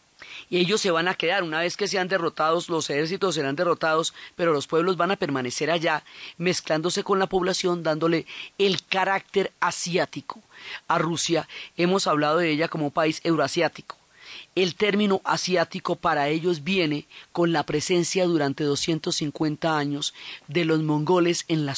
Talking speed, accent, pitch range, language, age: 155 wpm, Colombian, 160-190 Hz, Spanish, 30-49